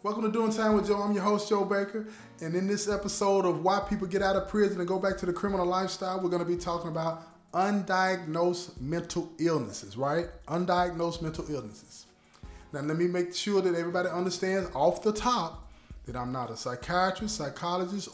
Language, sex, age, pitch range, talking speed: English, male, 20-39, 135-190 Hz, 195 wpm